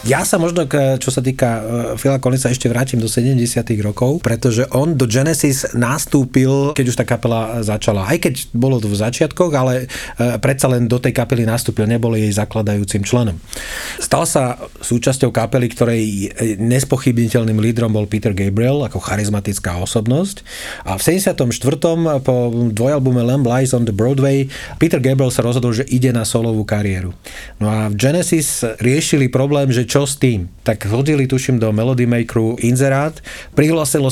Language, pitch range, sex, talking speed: Slovak, 115-140 Hz, male, 155 wpm